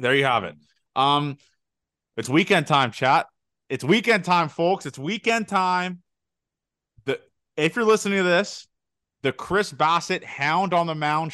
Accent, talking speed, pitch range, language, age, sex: American, 155 wpm, 130-180 Hz, English, 30-49, male